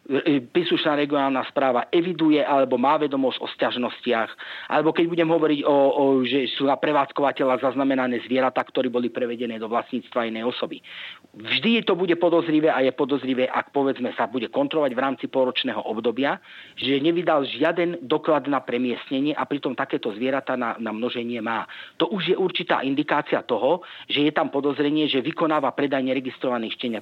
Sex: male